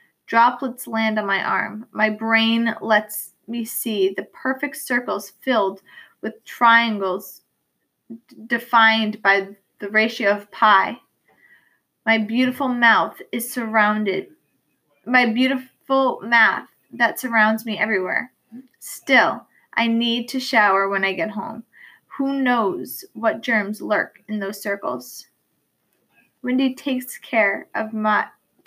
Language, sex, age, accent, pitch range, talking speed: English, female, 20-39, American, 210-250 Hz, 120 wpm